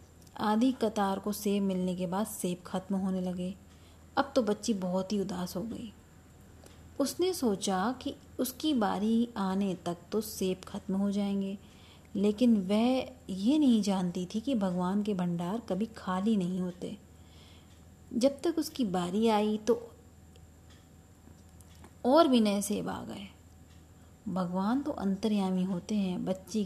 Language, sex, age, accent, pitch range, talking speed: Hindi, female, 20-39, native, 180-225 Hz, 140 wpm